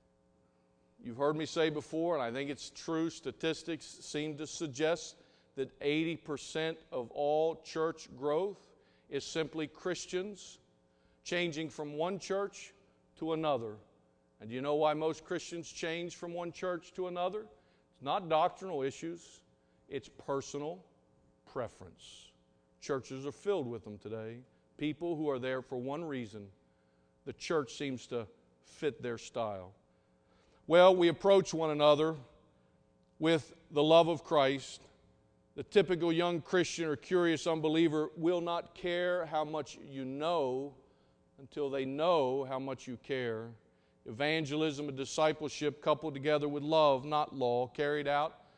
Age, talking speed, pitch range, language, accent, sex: 50-69, 135 wpm, 120-165 Hz, English, American, male